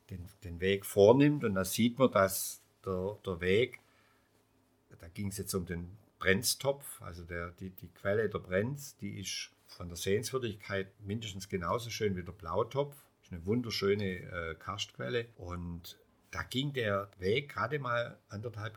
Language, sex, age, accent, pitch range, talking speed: German, male, 50-69, German, 90-115 Hz, 160 wpm